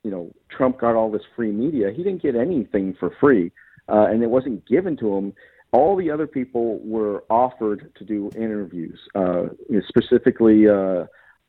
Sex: male